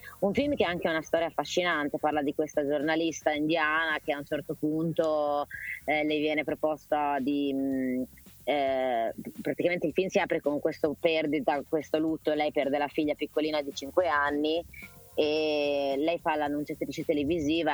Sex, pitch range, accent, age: female, 145-155 Hz, native, 20-39